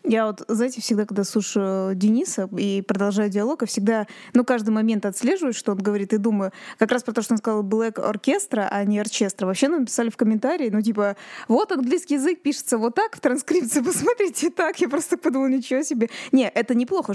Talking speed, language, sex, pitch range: 205 wpm, Russian, female, 210-265 Hz